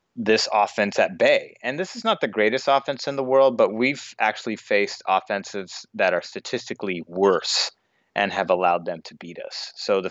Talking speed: 190 wpm